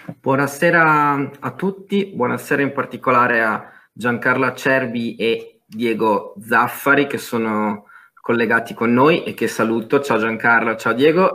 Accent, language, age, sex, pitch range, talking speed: native, Italian, 20-39, male, 110-135 Hz, 125 wpm